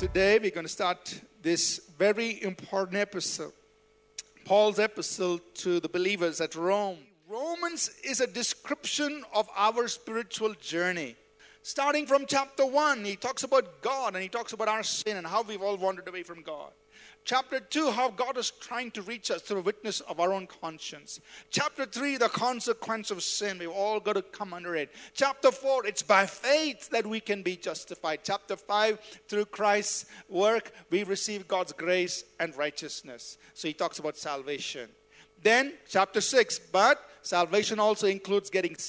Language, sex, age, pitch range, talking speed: English, male, 50-69, 185-250 Hz, 165 wpm